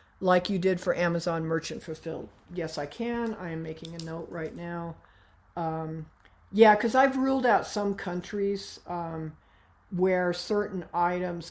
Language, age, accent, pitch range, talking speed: English, 50-69, American, 165-195 Hz, 150 wpm